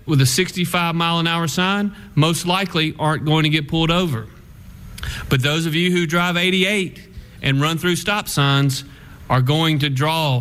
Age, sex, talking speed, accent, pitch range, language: 40-59, male, 160 wpm, American, 125-170 Hz, English